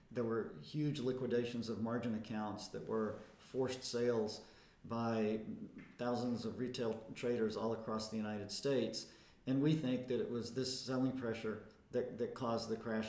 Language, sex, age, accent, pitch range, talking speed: English, male, 50-69, American, 115-130 Hz, 160 wpm